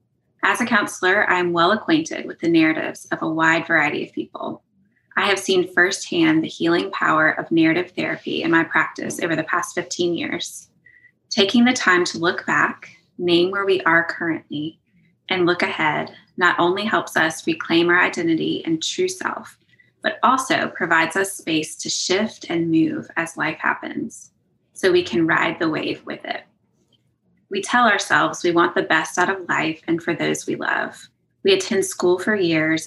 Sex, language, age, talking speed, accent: female, English, 20-39, 180 wpm, American